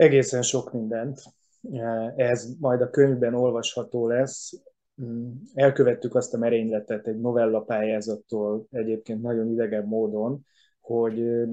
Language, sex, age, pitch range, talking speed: Hungarian, male, 20-39, 110-125 Hz, 110 wpm